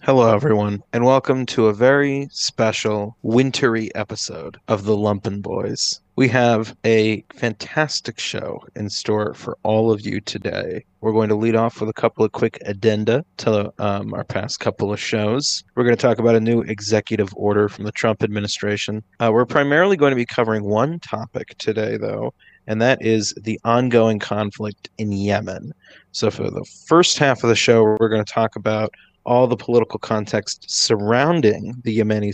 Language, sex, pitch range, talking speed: English, male, 105-125 Hz, 180 wpm